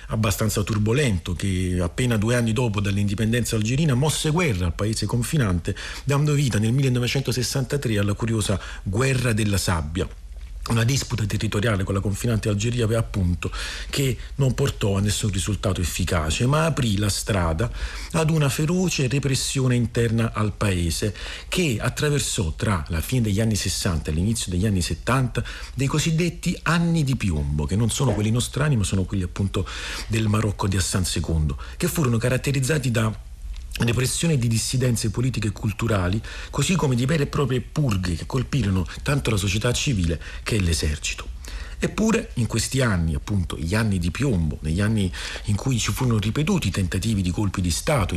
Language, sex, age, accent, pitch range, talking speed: Italian, male, 40-59, native, 95-130 Hz, 160 wpm